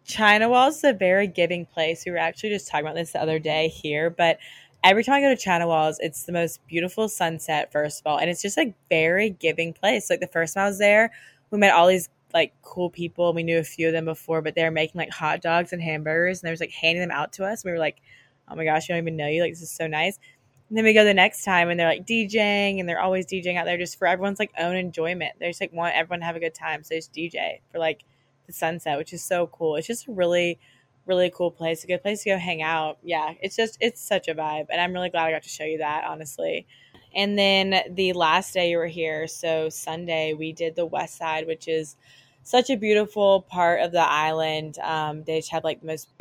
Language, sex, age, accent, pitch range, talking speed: English, female, 20-39, American, 160-185 Hz, 260 wpm